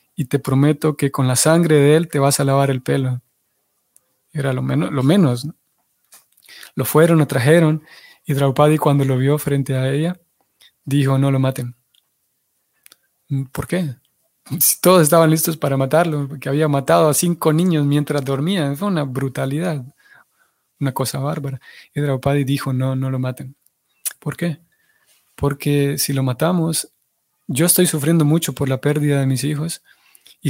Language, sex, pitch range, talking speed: Spanish, male, 135-165 Hz, 165 wpm